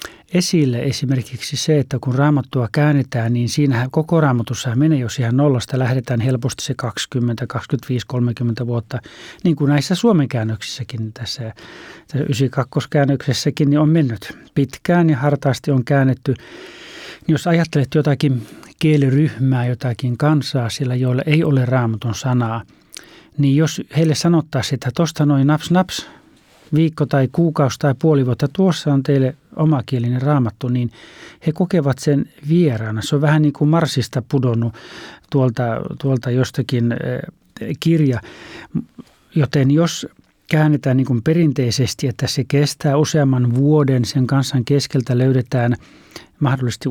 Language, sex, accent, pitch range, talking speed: Finnish, male, native, 125-150 Hz, 130 wpm